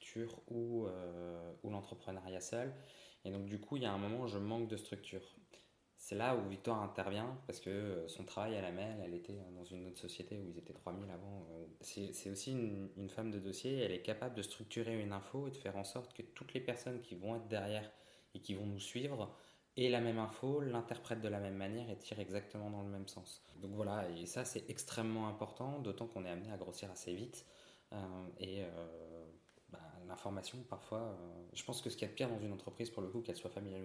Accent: French